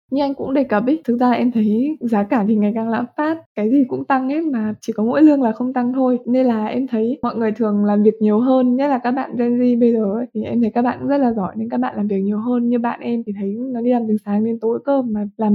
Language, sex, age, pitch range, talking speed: Vietnamese, female, 10-29, 215-260 Hz, 310 wpm